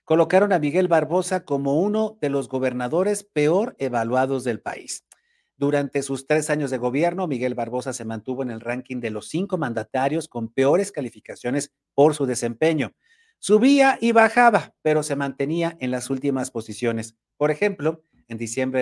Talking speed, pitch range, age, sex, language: 160 wpm, 125-170 Hz, 50-69, male, Spanish